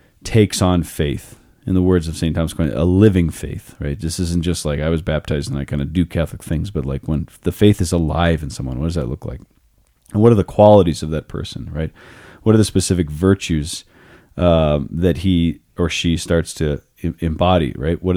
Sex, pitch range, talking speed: male, 80-100 Hz, 215 wpm